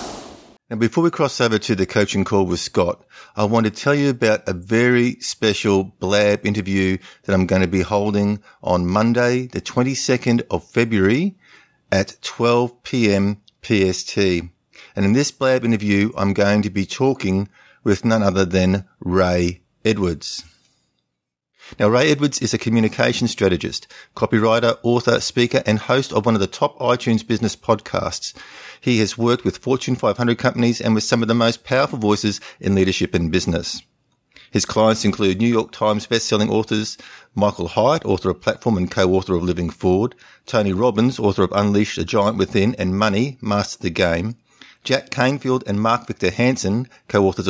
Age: 50-69